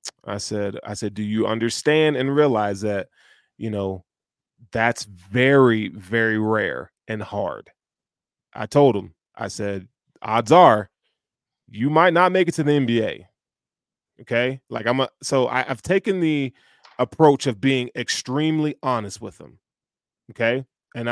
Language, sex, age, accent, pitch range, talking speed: English, male, 20-39, American, 110-140 Hz, 140 wpm